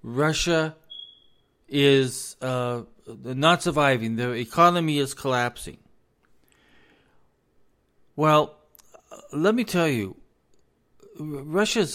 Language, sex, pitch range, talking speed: English, male, 130-180 Hz, 75 wpm